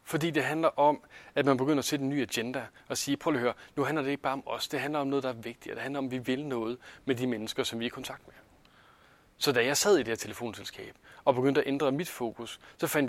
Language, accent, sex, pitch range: Danish, native, male, 125-150 Hz